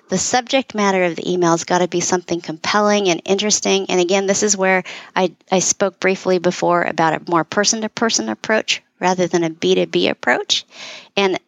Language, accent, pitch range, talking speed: English, American, 175-205 Hz, 185 wpm